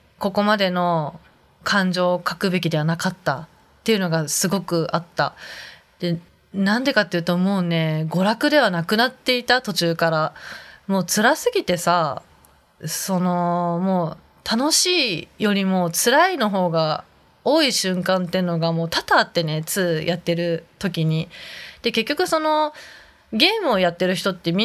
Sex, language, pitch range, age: female, Japanese, 170-240 Hz, 20-39